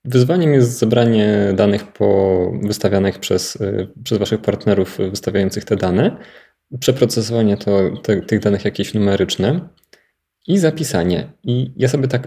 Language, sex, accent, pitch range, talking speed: Polish, male, native, 105-120 Hz, 125 wpm